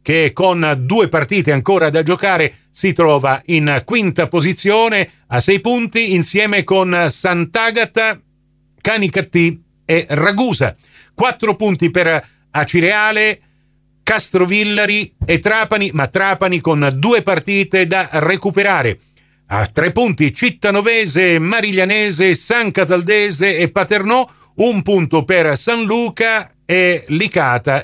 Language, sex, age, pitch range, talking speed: Italian, male, 50-69, 150-210 Hz, 110 wpm